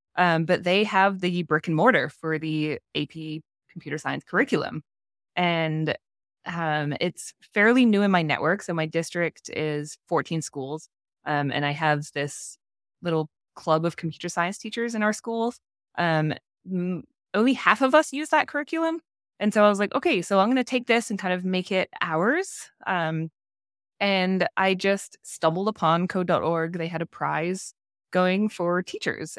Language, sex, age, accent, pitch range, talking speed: English, female, 20-39, American, 155-190 Hz, 165 wpm